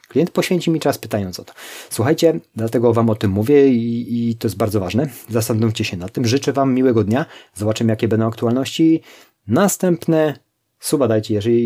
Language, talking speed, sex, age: Polish, 180 wpm, male, 30-49